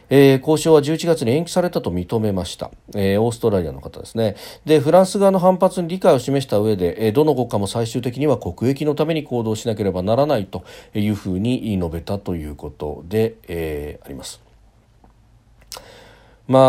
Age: 40-59